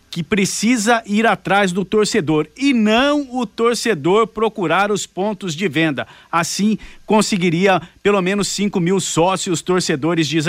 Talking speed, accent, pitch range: 135 wpm, Brazilian, 170-225 Hz